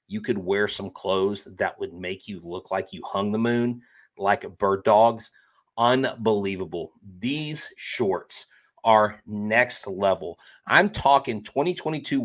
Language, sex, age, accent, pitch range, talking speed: English, male, 30-49, American, 110-125 Hz, 130 wpm